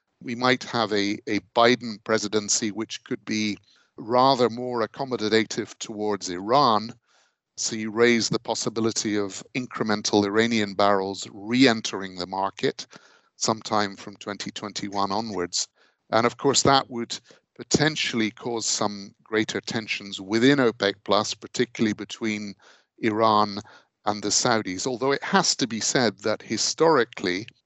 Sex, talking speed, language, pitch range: male, 125 wpm, English, 100-120 Hz